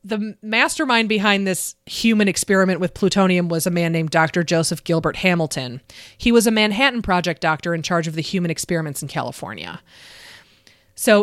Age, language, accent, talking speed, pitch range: 30-49, English, American, 165 wpm, 165-210 Hz